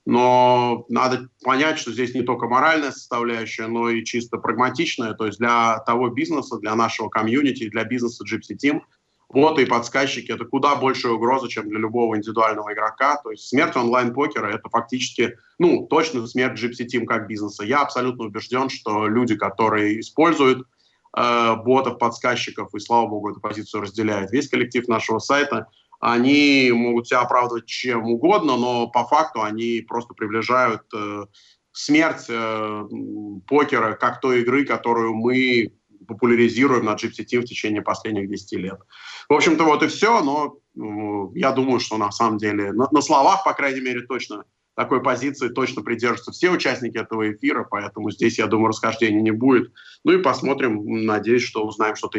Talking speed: 165 wpm